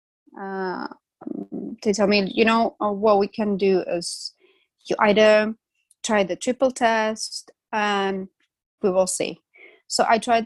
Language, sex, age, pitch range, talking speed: English, female, 20-39, 190-230 Hz, 145 wpm